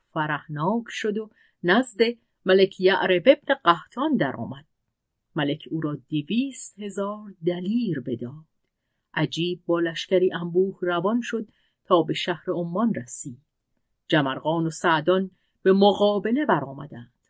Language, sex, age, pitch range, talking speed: Persian, female, 40-59, 160-205 Hz, 120 wpm